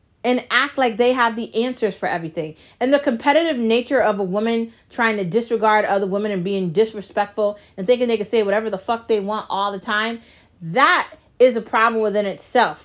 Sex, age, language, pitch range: female, 30-49, English, 170-235 Hz